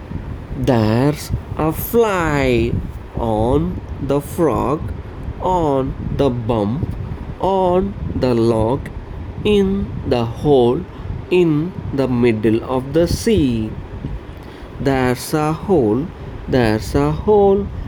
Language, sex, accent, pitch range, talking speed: English, male, Indian, 110-145 Hz, 90 wpm